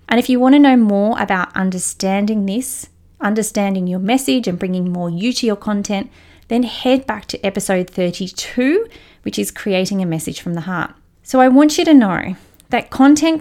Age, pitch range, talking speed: 30-49, 180-245 Hz, 190 wpm